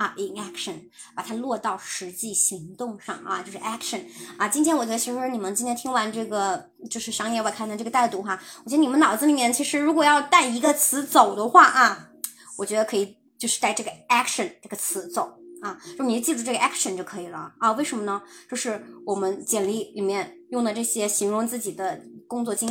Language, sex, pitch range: Chinese, male, 200-275 Hz